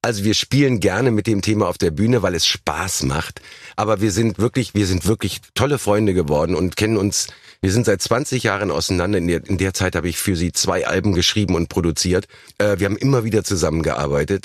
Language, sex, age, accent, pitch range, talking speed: German, male, 50-69, German, 90-110 Hz, 215 wpm